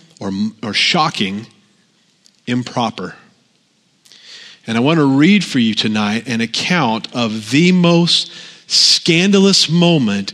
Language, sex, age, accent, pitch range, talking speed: English, male, 40-59, American, 115-155 Hz, 110 wpm